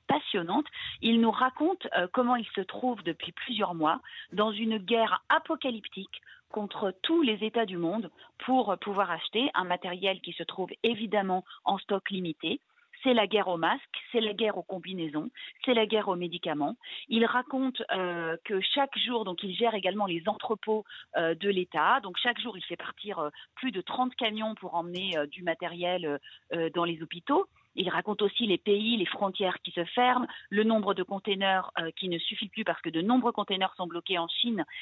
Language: French